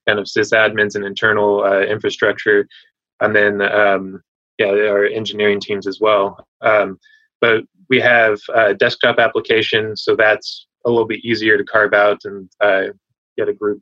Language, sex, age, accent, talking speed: English, male, 20-39, American, 160 wpm